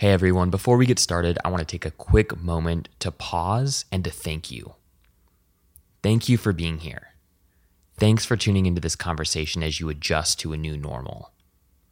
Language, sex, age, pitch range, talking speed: English, male, 20-39, 85-110 Hz, 185 wpm